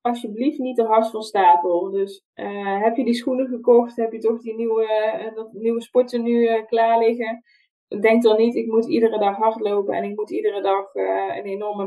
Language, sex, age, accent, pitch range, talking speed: Dutch, female, 20-39, Dutch, 200-235 Hz, 205 wpm